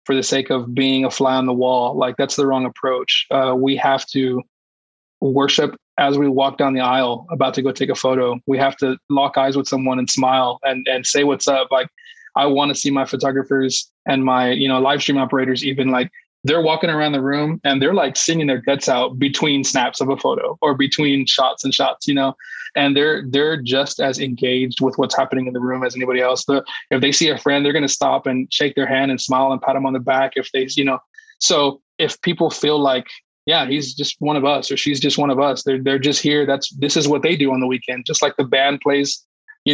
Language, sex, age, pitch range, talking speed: English, male, 20-39, 130-145 Hz, 245 wpm